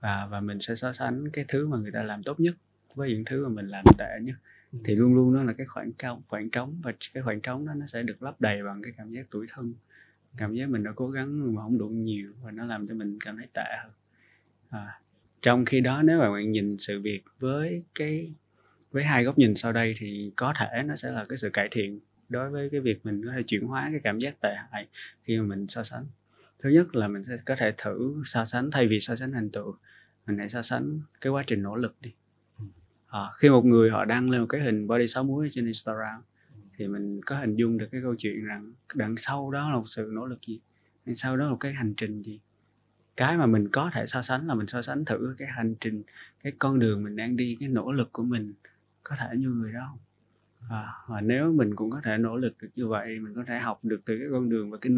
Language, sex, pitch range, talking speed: Vietnamese, male, 110-130 Hz, 260 wpm